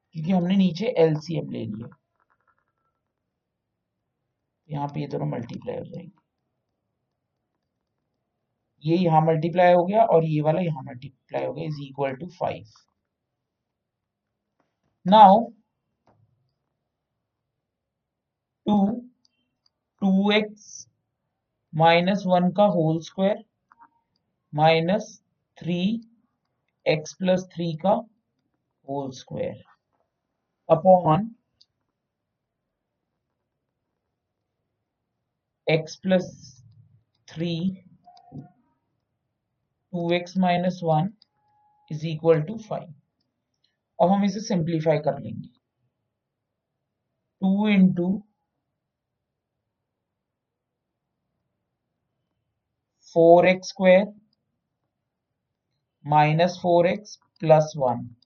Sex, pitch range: male, 140-190 Hz